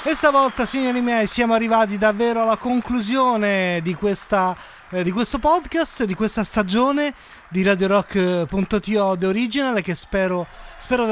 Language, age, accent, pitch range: Italian, 30-49, native, 180-230 Hz